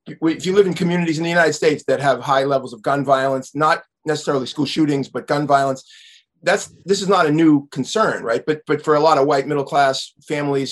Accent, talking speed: American, 225 wpm